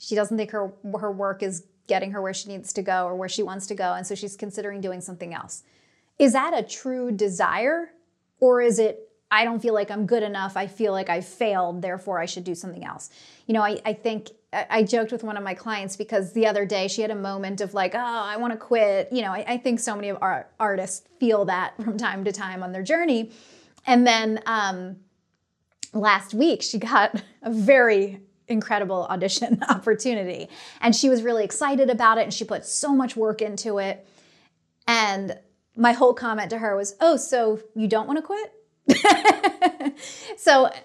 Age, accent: 30-49, American